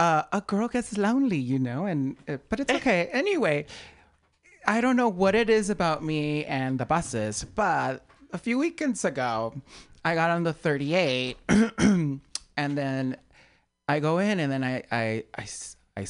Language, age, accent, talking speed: English, 30-49, American, 160 wpm